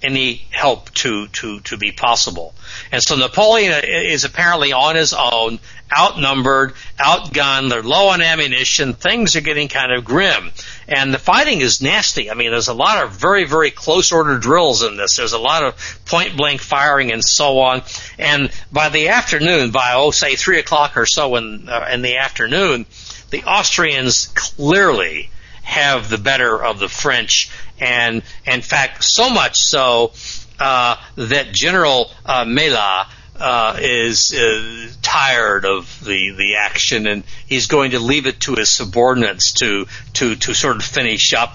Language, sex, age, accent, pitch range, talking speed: English, male, 60-79, American, 110-145 Hz, 160 wpm